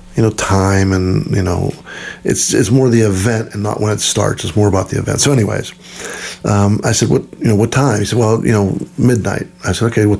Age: 50-69